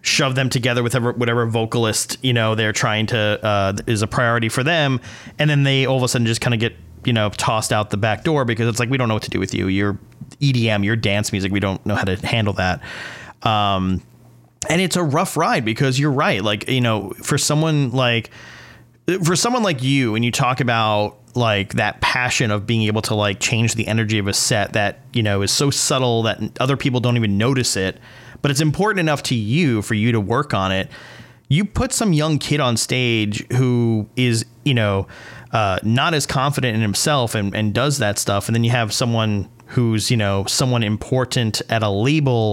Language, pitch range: English, 105-135 Hz